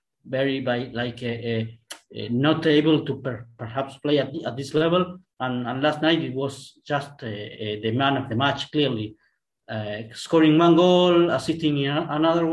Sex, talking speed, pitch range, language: male, 185 wpm, 130-165 Hz, English